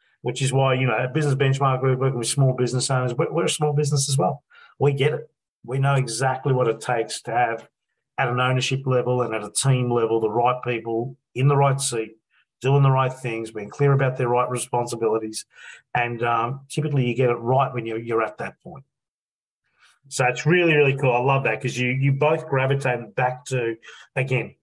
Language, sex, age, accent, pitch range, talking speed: English, male, 40-59, Australian, 120-145 Hz, 215 wpm